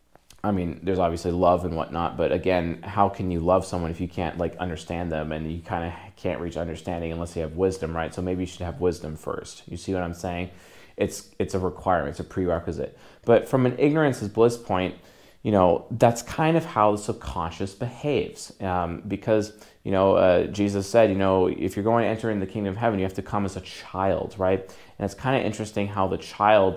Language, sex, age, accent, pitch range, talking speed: English, male, 30-49, American, 90-110 Hz, 230 wpm